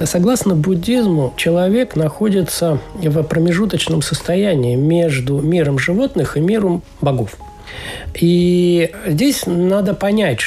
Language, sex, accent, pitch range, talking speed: Russian, male, native, 155-200 Hz, 95 wpm